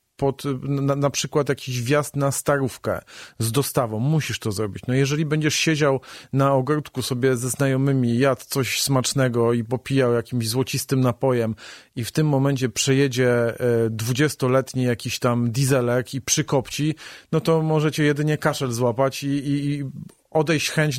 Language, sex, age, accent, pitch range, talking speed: Polish, male, 40-59, native, 125-145 Hz, 145 wpm